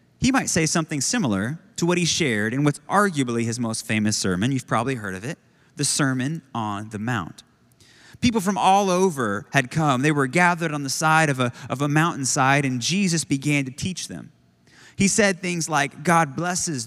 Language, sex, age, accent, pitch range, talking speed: English, male, 30-49, American, 115-165 Hz, 190 wpm